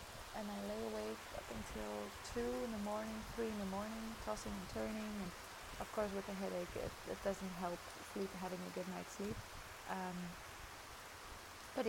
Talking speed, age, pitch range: 175 wpm, 20-39, 180-220 Hz